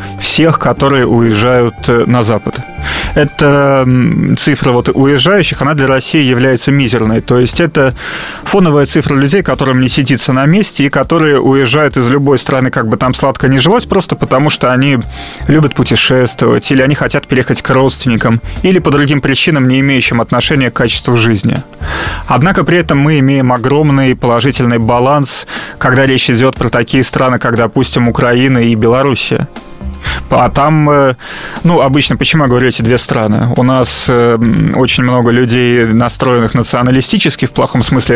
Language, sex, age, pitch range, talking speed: Russian, male, 30-49, 120-140 Hz, 155 wpm